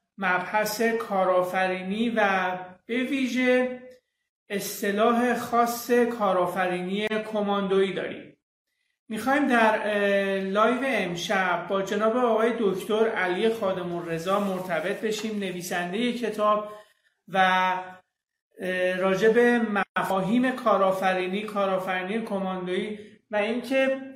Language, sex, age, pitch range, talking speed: Persian, male, 30-49, 190-225 Hz, 80 wpm